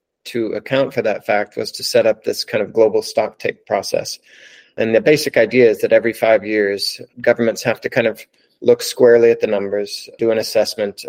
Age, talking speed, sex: 30-49, 200 wpm, male